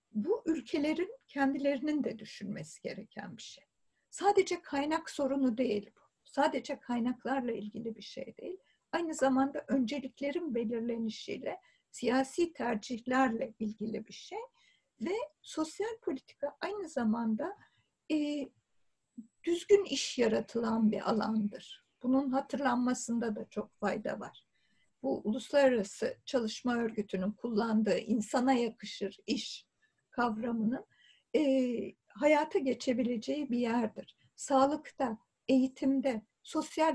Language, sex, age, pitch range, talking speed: Turkish, female, 60-79, 230-290 Hz, 100 wpm